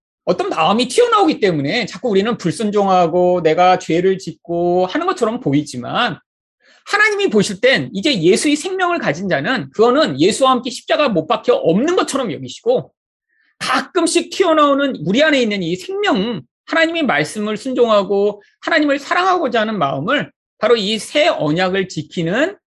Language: Korean